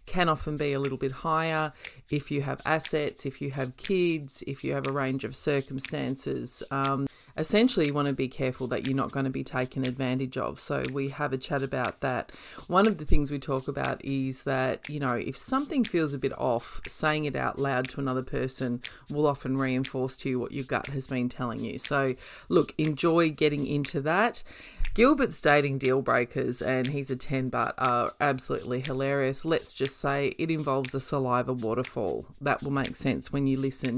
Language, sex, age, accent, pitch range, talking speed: English, female, 30-49, Australian, 130-150 Hz, 200 wpm